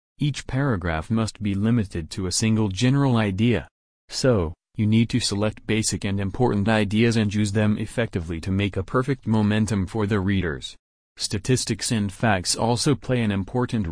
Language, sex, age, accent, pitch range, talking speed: English, male, 30-49, American, 95-115 Hz, 165 wpm